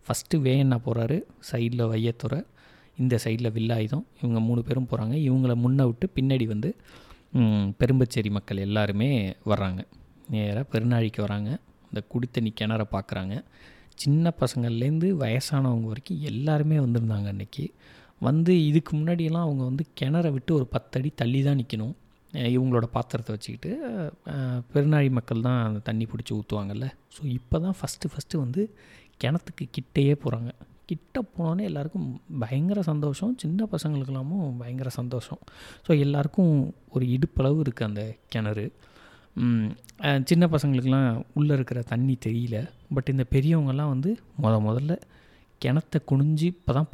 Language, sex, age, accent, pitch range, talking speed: Tamil, male, 30-49, native, 115-150 Hz, 125 wpm